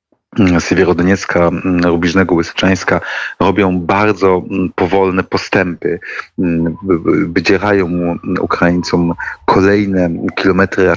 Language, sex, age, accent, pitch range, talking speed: Polish, male, 30-49, native, 90-105 Hz, 65 wpm